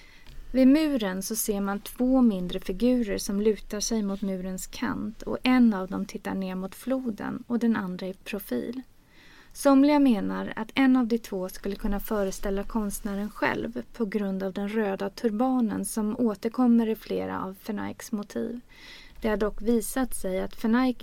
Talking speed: 170 wpm